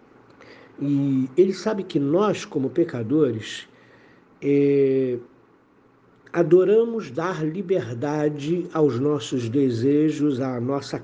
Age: 60-79